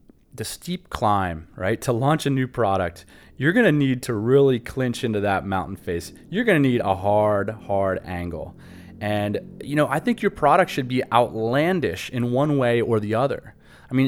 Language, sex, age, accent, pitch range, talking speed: English, male, 30-49, American, 100-140 Hz, 195 wpm